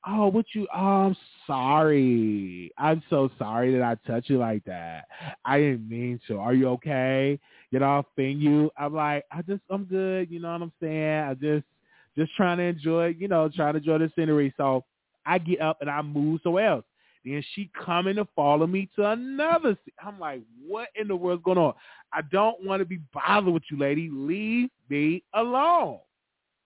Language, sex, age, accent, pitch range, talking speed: English, male, 20-39, American, 145-200 Hz, 200 wpm